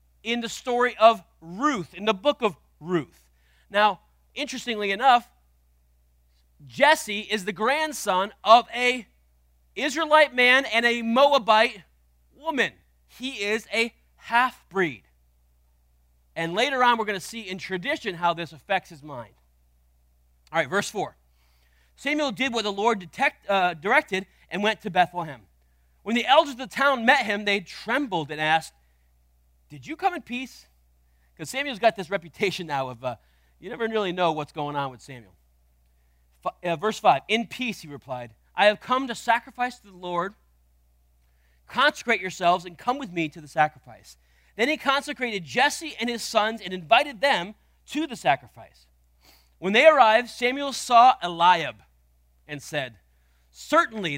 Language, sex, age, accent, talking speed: English, male, 30-49, American, 155 wpm